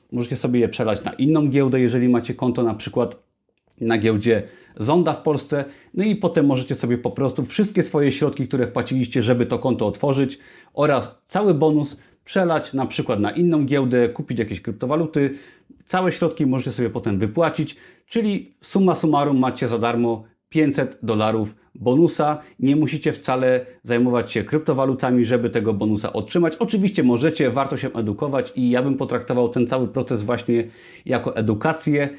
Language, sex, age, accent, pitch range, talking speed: Polish, male, 30-49, native, 120-150 Hz, 160 wpm